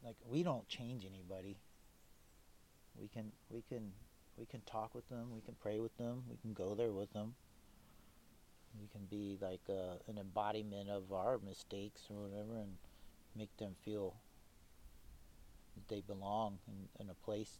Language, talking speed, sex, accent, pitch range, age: English, 165 wpm, male, American, 95-110 Hz, 40-59